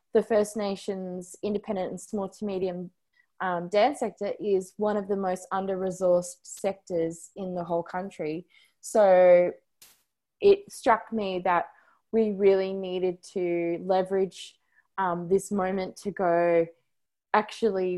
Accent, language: Australian, English